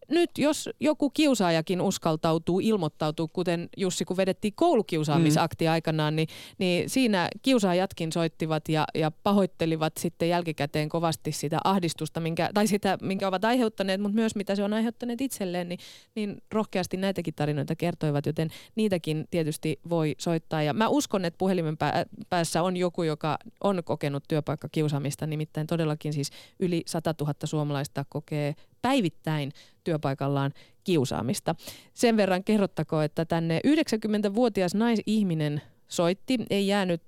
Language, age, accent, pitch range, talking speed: Finnish, 30-49, native, 155-195 Hz, 135 wpm